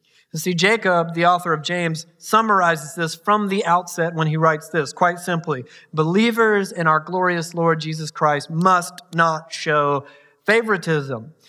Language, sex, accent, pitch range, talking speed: English, male, American, 155-185 Hz, 150 wpm